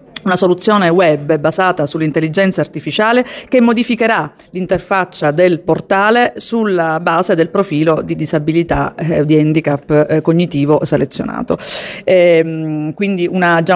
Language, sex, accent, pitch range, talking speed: Italian, female, native, 165-195 Hz, 100 wpm